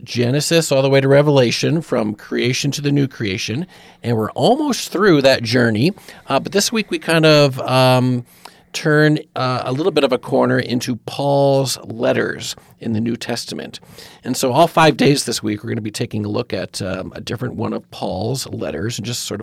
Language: English